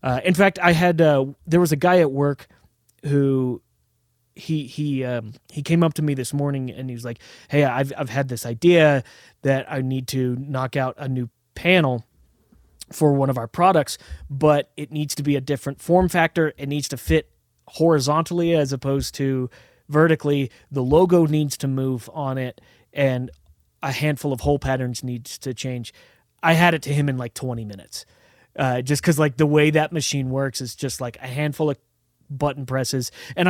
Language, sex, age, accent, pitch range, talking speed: English, male, 30-49, American, 125-150 Hz, 195 wpm